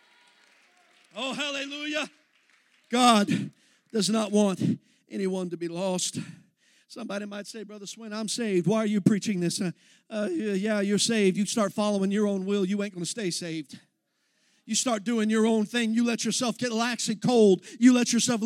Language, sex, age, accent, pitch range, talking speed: English, male, 50-69, American, 195-235 Hz, 180 wpm